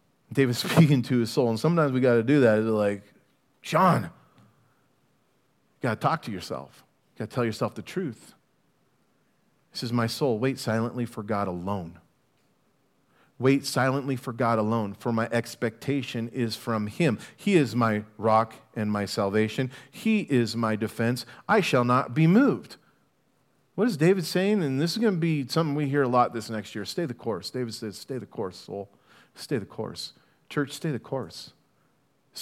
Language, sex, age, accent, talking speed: English, male, 40-59, American, 180 wpm